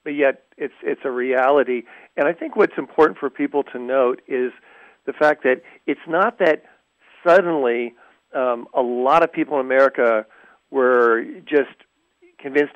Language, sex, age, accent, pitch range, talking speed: English, male, 50-69, American, 125-150 Hz, 155 wpm